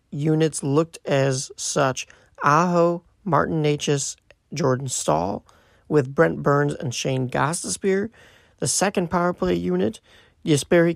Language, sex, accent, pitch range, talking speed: English, male, American, 130-165 Hz, 115 wpm